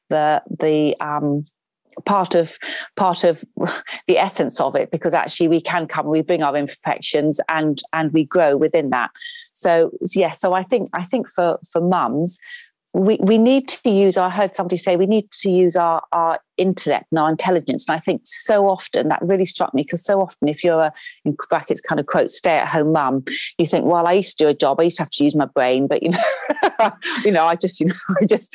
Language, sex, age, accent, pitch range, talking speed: English, female, 40-59, British, 165-210 Hz, 225 wpm